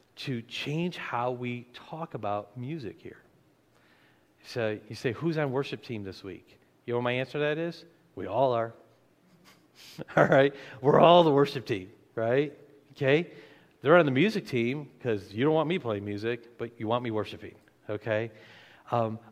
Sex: male